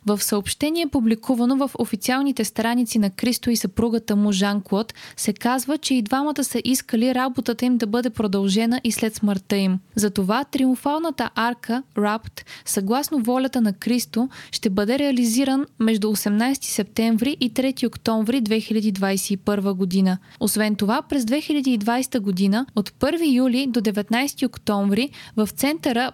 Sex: female